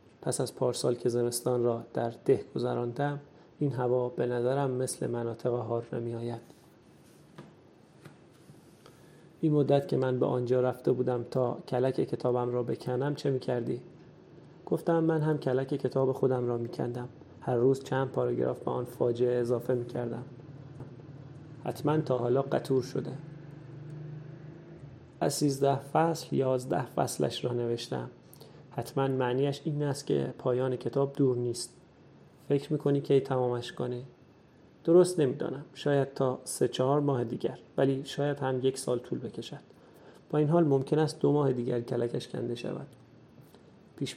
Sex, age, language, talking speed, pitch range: male, 30-49, Persian, 140 wpm, 125-145 Hz